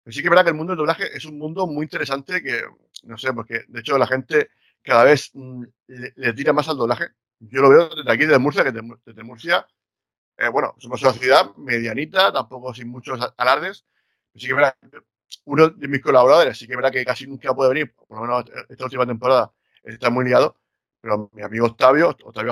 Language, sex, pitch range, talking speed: Spanish, male, 120-155 Hz, 220 wpm